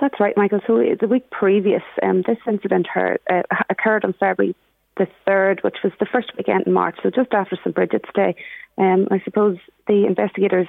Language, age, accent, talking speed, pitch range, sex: English, 30-49, Irish, 190 wpm, 175-205 Hz, female